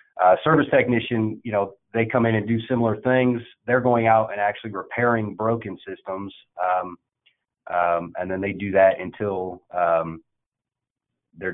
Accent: American